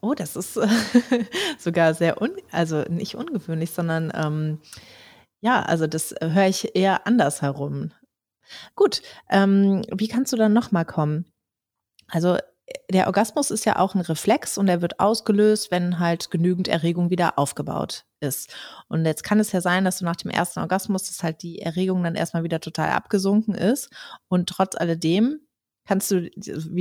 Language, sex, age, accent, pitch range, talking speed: German, female, 30-49, German, 165-210 Hz, 170 wpm